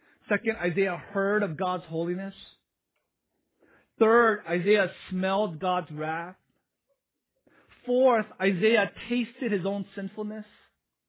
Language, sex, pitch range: English, male, 170-235 Hz